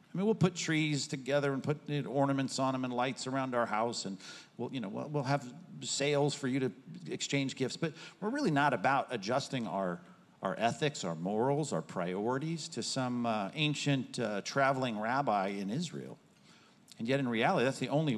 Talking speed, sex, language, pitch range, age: 200 wpm, male, English, 120-150 Hz, 50-69